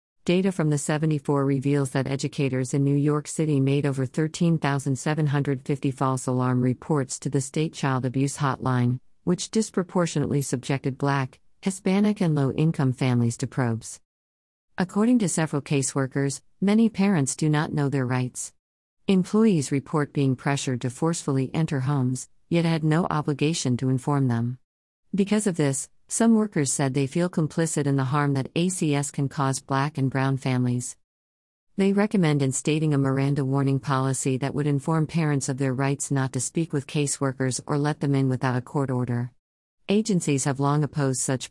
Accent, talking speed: American, 160 wpm